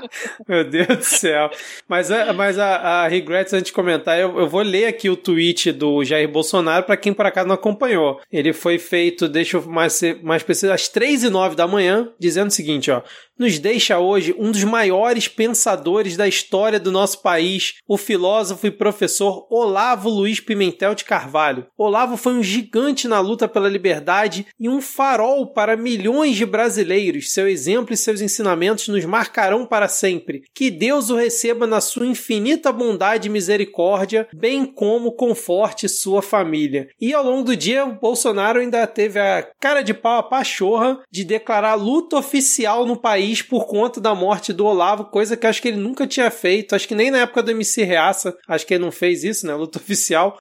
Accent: Brazilian